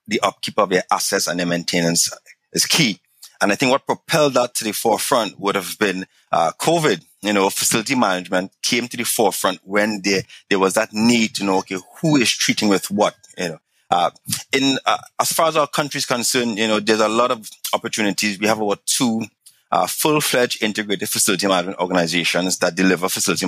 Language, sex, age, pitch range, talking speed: English, male, 30-49, 95-120 Hz, 200 wpm